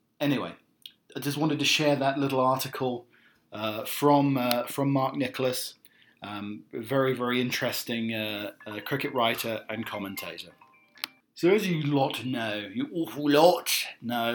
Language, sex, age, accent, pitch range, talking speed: English, male, 40-59, British, 115-145 Hz, 145 wpm